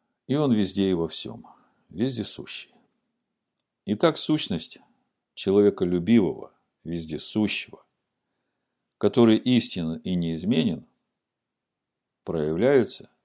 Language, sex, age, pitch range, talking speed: Russian, male, 50-69, 90-125 Hz, 75 wpm